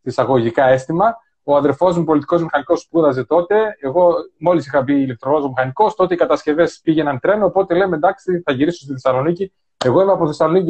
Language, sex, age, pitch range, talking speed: Greek, male, 30-49, 145-195 Hz, 165 wpm